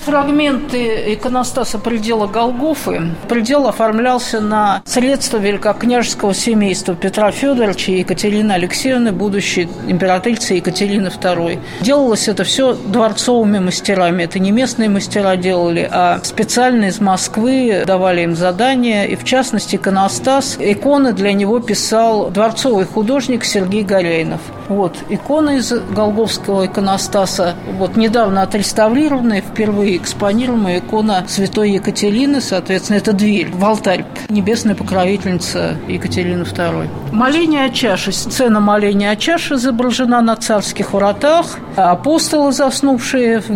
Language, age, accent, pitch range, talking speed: Russian, 50-69, native, 190-240 Hz, 115 wpm